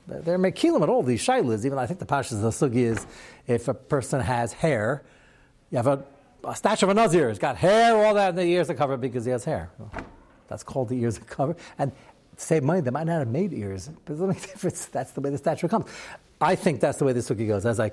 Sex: male